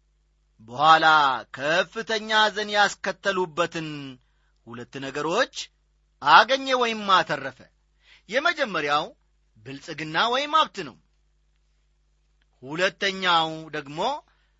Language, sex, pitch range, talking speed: Amharic, male, 145-215 Hz, 65 wpm